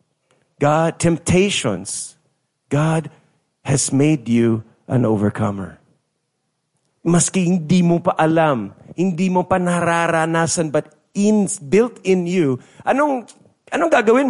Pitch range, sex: 120-165 Hz, male